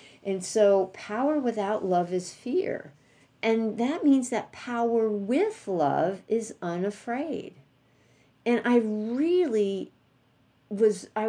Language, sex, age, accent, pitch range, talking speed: English, female, 50-69, American, 155-220 Hz, 110 wpm